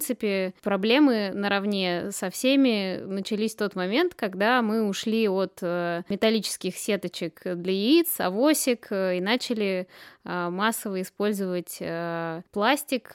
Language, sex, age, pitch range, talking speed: Russian, female, 20-39, 185-220 Hz, 110 wpm